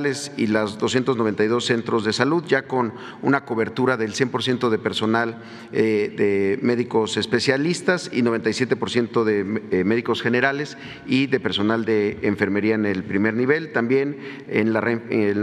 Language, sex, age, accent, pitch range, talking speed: Spanish, male, 40-59, Mexican, 110-135 Hz, 130 wpm